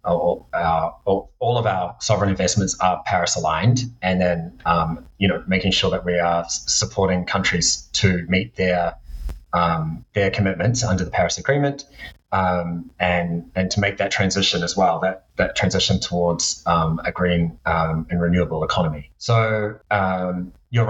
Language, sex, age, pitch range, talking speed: English, male, 30-49, 90-100 Hz, 155 wpm